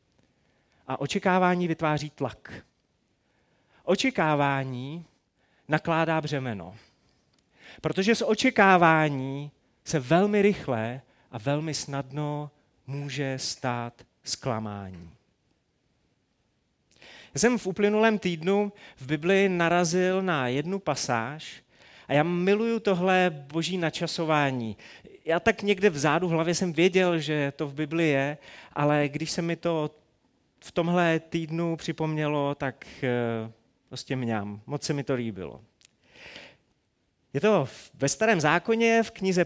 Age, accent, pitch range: 30-49, native, 140-185 Hz